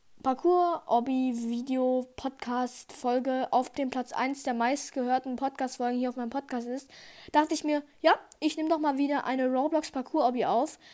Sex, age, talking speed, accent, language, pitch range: female, 20-39, 165 wpm, German, German, 245-290 Hz